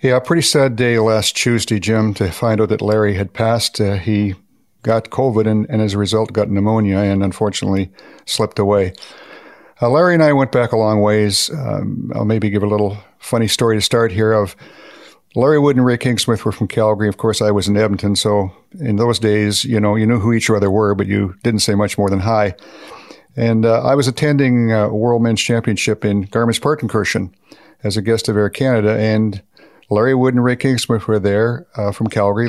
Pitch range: 105-120 Hz